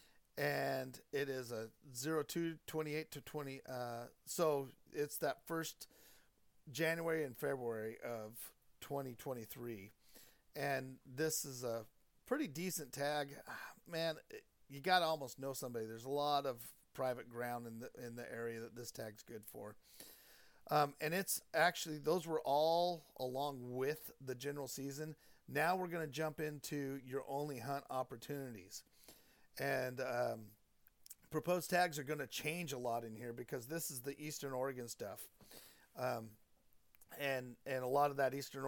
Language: English